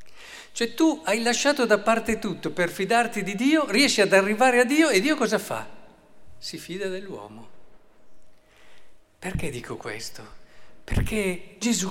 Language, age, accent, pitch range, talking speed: Italian, 50-69, native, 130-200 Hz, 140 wpm